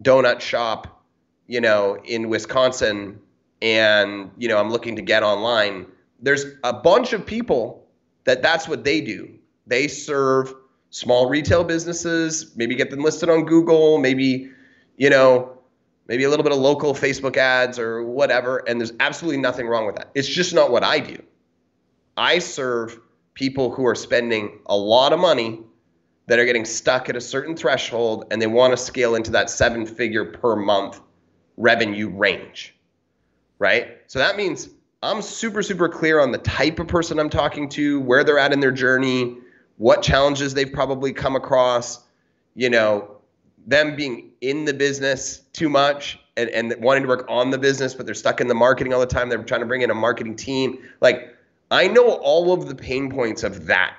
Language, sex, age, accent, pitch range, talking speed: English, male, 30-49, American, 115-140 Hz, 180 wpm